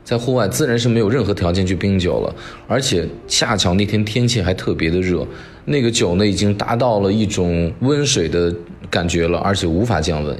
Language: Chinese